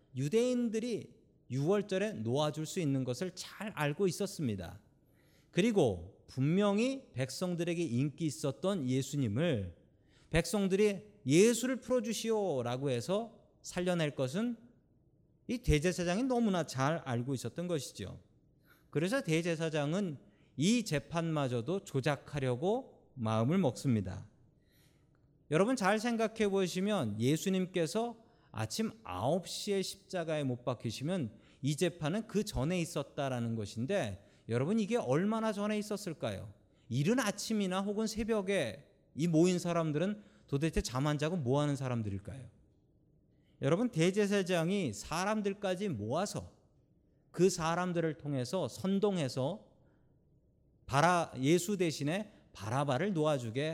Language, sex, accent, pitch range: Korean, male, native, 135-200 Hz